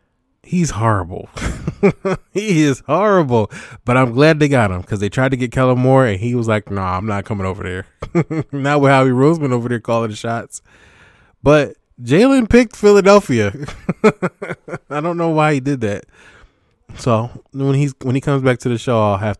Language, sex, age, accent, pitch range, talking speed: English, male, 20-39, American, 100-130 Hz, 190 wpm